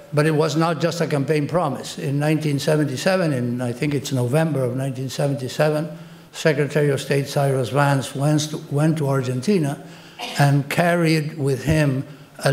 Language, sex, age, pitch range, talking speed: English, male, 60-79, 135-155 Hz, 145 wpm